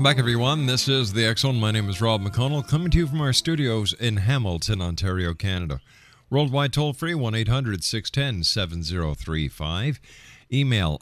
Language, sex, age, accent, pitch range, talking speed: English, male, 50-69, American, 95-135 Hz, 135 wpm